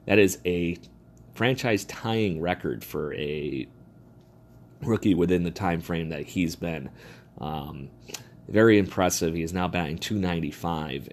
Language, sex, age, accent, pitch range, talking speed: English, male, 30-49, American, 80-95 Hz, 125 wpm